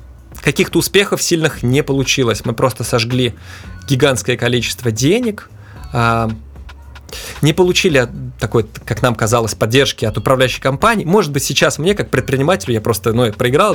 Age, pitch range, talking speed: 20-39, 110-135 Hz, 135 wpm